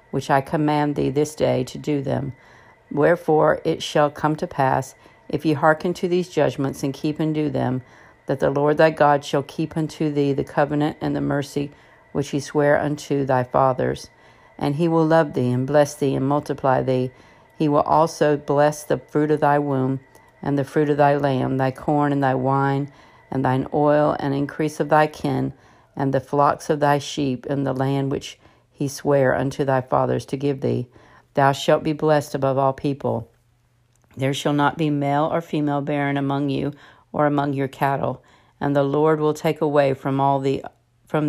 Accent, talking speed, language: American, 195 wpm, English